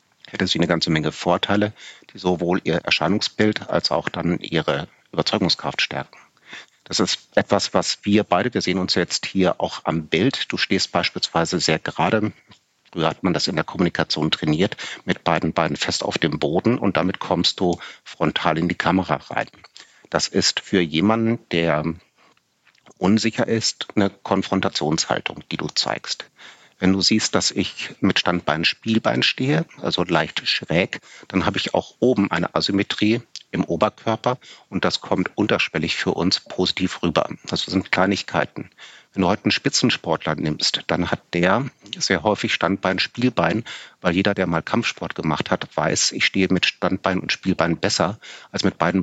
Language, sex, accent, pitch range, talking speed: German, male, German, 85-105 Hz, 165 wpm